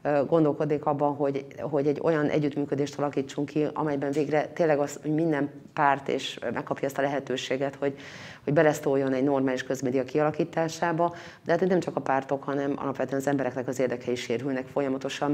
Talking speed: 170 wpm